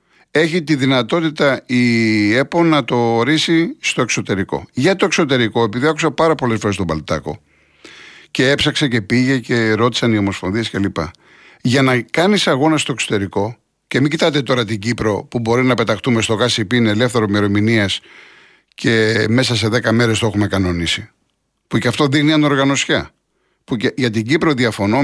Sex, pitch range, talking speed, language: male, 110-155 Hz, 160 wpm, Greek